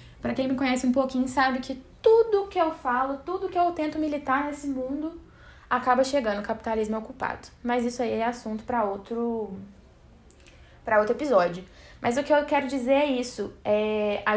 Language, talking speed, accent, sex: Portuguese, 185 wpm, Brazilian, female